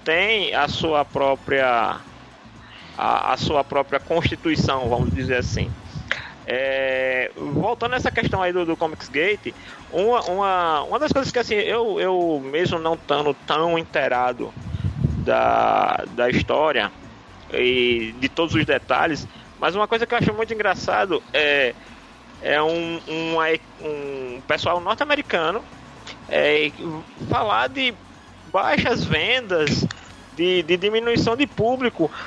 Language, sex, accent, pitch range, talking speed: Portuguese, male, Brazilian, 150-225 Hz, 125 wpm